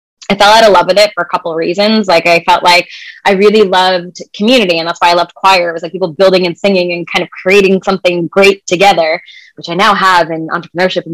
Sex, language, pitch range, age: female, English, 180-230 Hz, 20-39